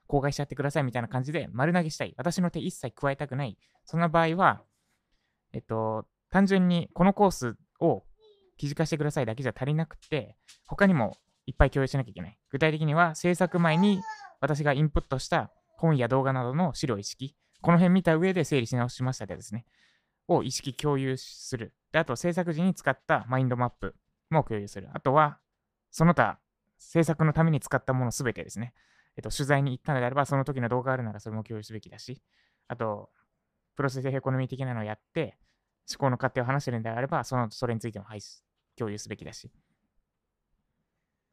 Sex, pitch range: male, 125-170 Hz